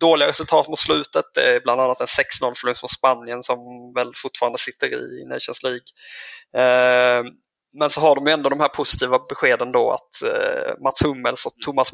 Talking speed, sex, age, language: 175 wpm, male, 20-39, English